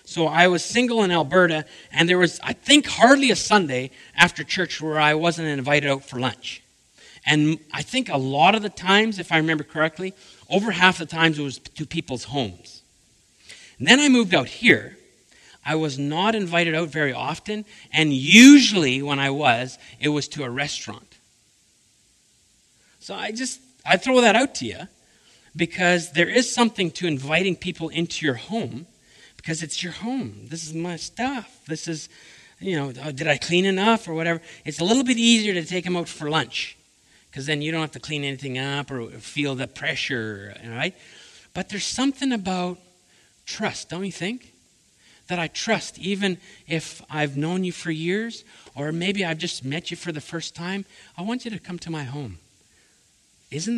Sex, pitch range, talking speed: male, 145-195 Hz, 185 wpm